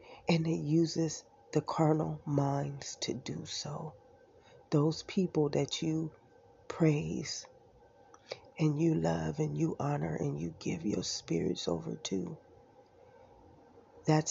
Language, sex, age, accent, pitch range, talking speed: English, female, 30-49, American, 150-170 Hz, 115 wpm